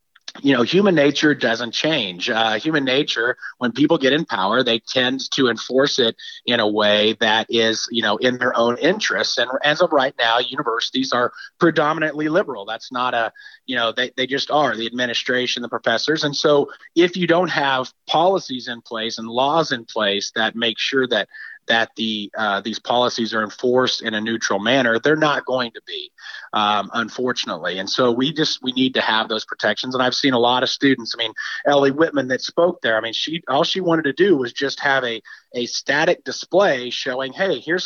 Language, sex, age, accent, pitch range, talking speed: English, male, 30-49, American, 120-160 Hz, 205 wpm